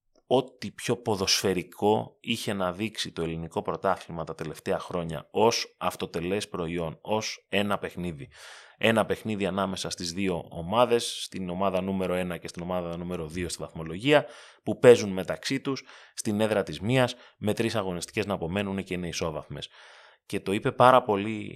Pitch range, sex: 85-110 Hz, male